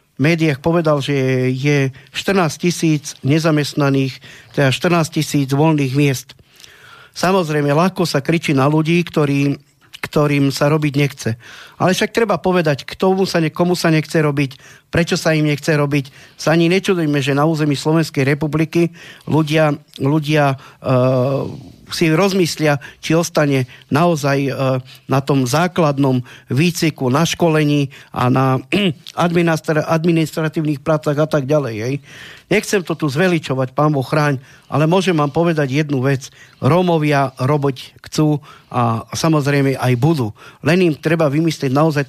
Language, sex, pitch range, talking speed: Slovak, male, 135-160 Hz, 130 wpm